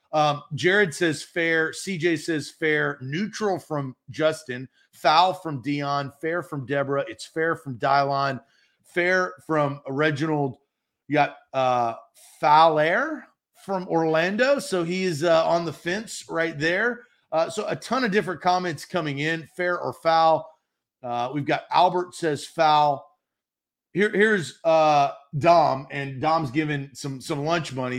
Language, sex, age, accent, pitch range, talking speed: English, male, 40-59, American, 140-180 Hz, 140 wpm